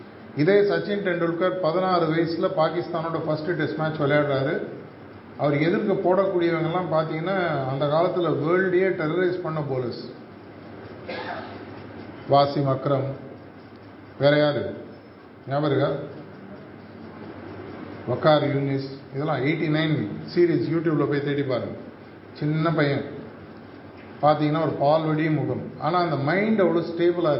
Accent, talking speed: native, 100 wpm